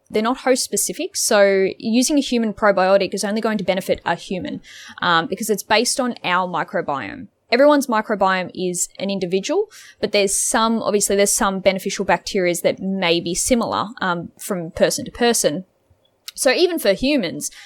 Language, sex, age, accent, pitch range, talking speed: English, female, 10-29, Australian, 185-235 Hz, 165 wpm